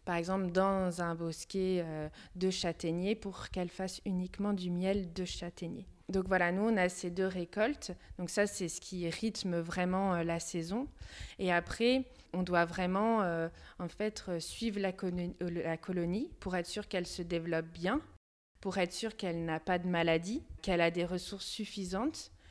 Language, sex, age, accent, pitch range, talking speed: French, female, 20-39, French, 170-200 Hz, 165 wpm